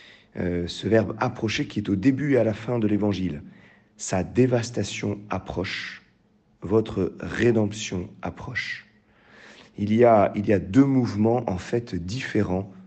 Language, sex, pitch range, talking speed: French, male, 95-110 Hz, 145 wpm